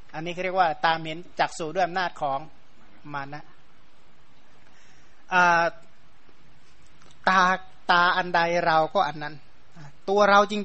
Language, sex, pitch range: Thai, male, 155-185 Hz